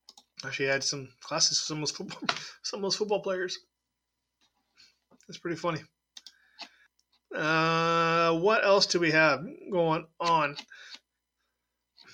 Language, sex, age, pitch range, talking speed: English, male, 30-49, 155-215 Hz, 110 wpm